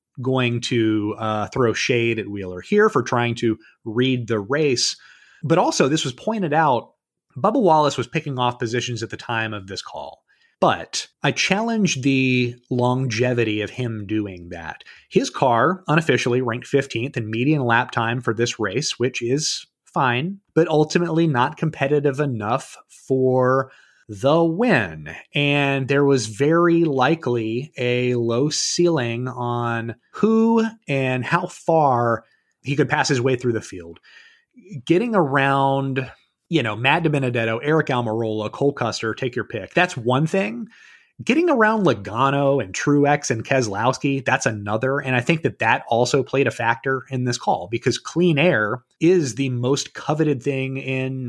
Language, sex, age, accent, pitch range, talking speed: English, male, 30-49, American, 120-155 Hz, 155 wpm